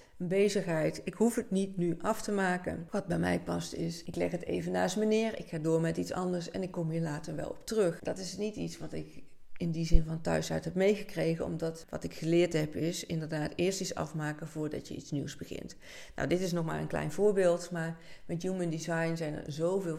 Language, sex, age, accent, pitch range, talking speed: Dutch, female, 40-59, Dutch, 160-180 Hz, 235 wpm